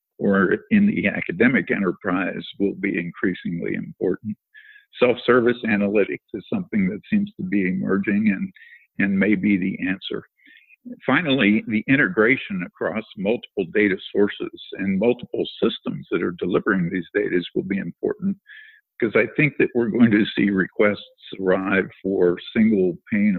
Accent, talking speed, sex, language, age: American, 140 wpm, male, English, 50-69